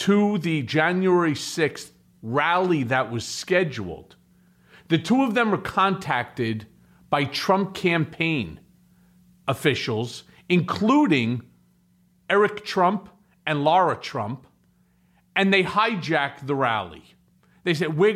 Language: English